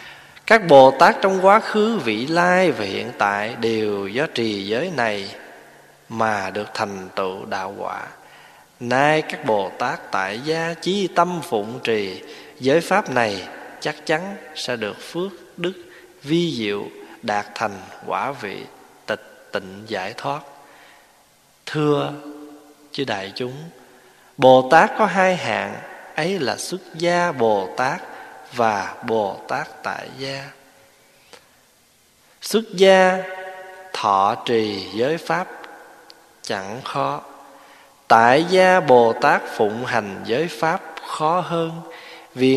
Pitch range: 110-175 Hz